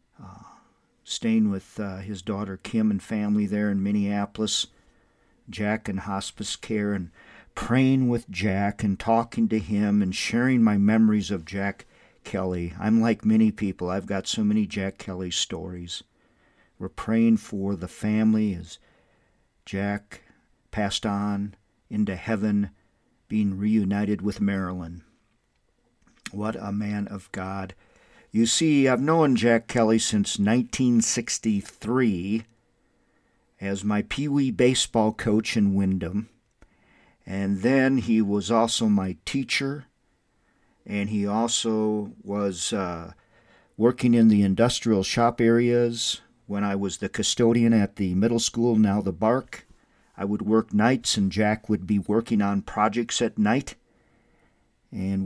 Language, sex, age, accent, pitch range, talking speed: English, male, 50-69, American, 100-115 Hz, 130 wpm